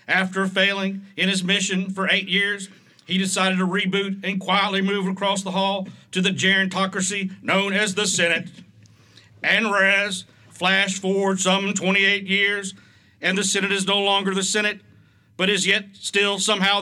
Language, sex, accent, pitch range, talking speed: English, male, American, 190-210 Hz, 160 wpm